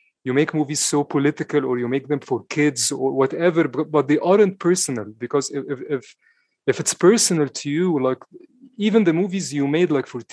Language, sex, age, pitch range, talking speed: English, male, 30-49, 125-155 Hz, 200 wpm